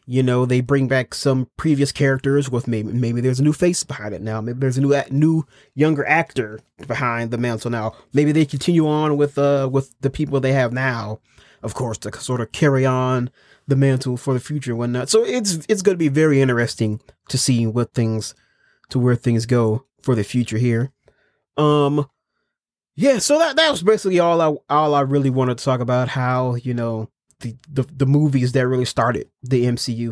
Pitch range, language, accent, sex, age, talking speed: 120-150 Hz, English, American, male, 30-49, 205 wpm